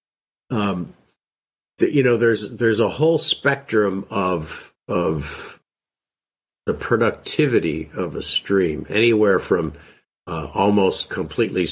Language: English